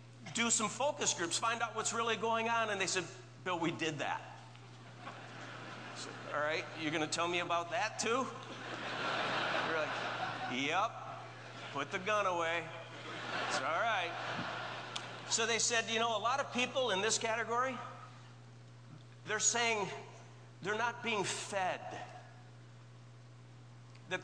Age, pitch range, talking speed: 50-69, 155-235 Hz, 145 wpm